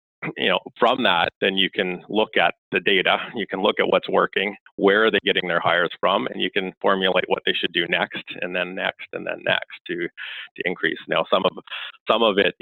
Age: 30-49